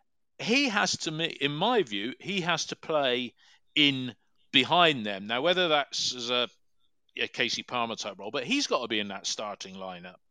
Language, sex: English, male